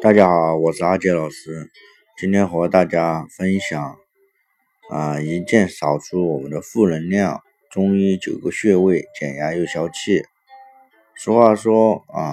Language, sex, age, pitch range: Chinese, male, 50-69, 90-150 Hz